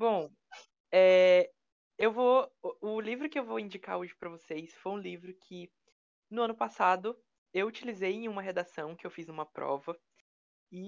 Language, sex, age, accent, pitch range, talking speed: Portuguese, female, 20-39, Brazilian, 175-220 Hz, 170 wpm